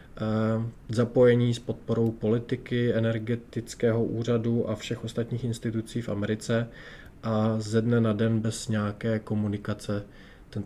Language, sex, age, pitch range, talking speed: Czech, male, 20-39, 105-115 Hz, 120 wpm